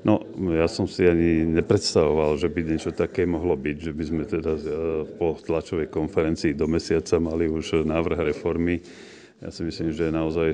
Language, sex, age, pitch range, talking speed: Slovak, male, 40-59, 80-90 Hz, 170 wpm